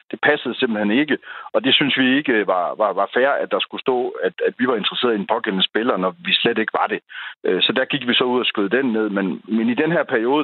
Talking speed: 275 wpm